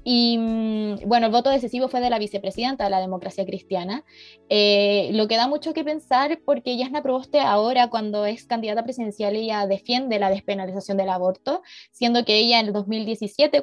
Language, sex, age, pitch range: Spanish, female, 20-39, 200-240 Hz